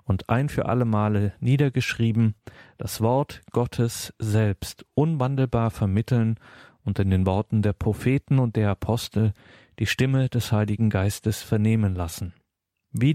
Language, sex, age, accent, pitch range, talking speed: German, male, 40-59, German, 105-130 Hz, 130 wpm